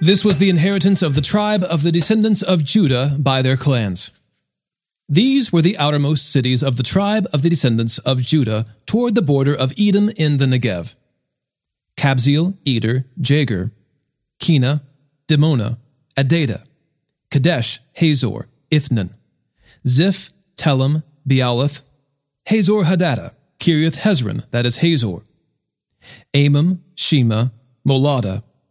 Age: 40-59